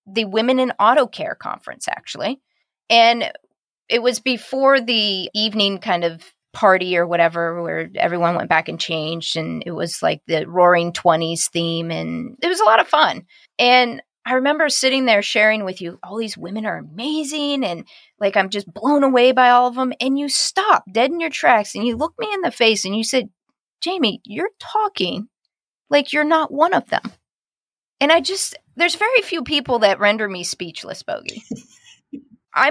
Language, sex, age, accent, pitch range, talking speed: English, female, 30-49, American, 185-280 Hz, 185 wpm